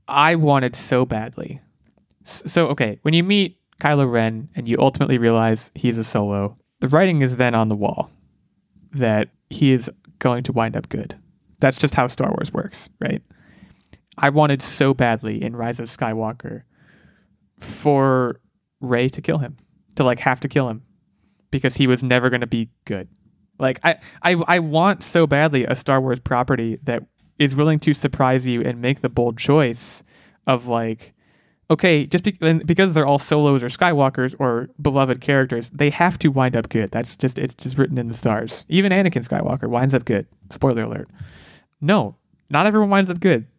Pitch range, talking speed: 120-155 Hz, 180 wpm